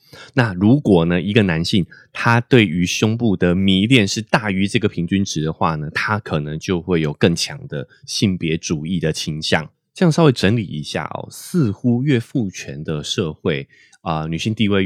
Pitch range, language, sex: 85-115 Hz, Chinese, male